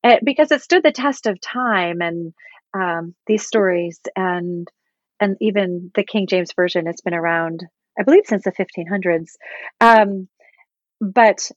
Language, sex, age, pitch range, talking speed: English, female, 30-49, 185-225 Hz, 155 wpm